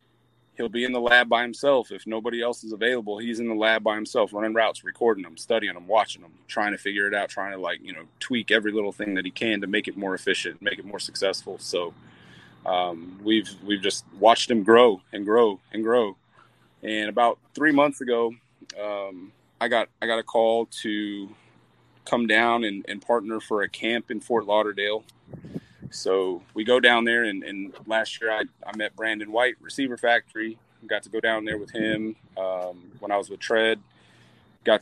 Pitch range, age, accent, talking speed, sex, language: 105-120 Hz, 30-49, American, 205 wpm, male, English